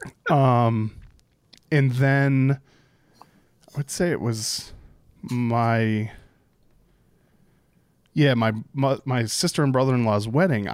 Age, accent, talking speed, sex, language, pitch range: 20-39, American, 90 wpm, male, English, 110-135 Hz